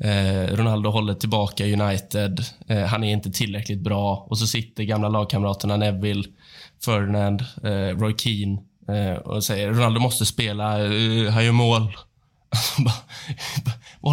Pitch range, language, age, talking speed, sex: 100-120 Hz, Swedish, 20-39, 115 wpm, male